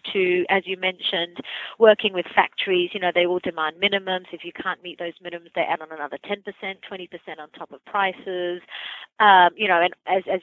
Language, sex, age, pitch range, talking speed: English, female, 30-49, 175-215 Hz, 200 wpm